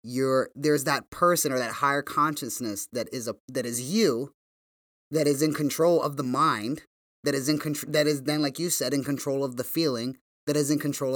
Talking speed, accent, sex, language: 215 wpm, American, male, English